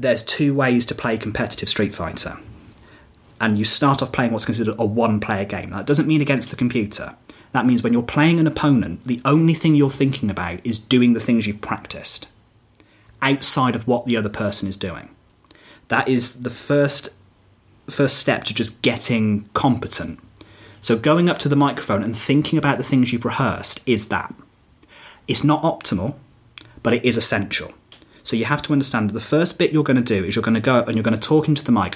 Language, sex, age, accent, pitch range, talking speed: English, male, 30-49, British, 110-140 Hz, 210 wpm